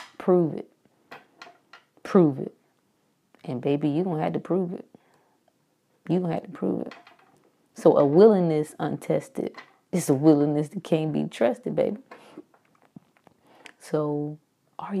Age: 20-39